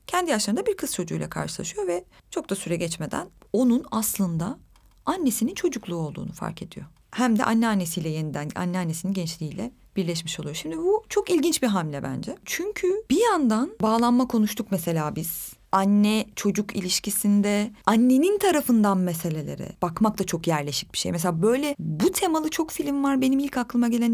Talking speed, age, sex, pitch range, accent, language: 155 wpm, 30-49, female, 180-245 Hz, native, Turkish